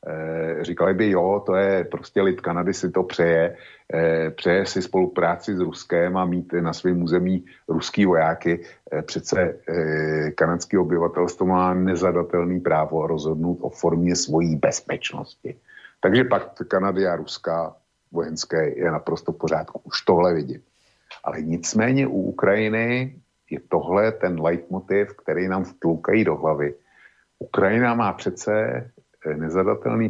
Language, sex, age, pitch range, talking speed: Slovak, male, 50-69, 80-95 Hz, 130 wpm